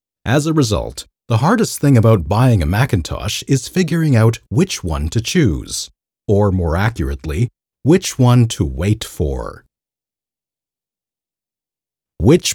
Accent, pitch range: American, 90-130 Hz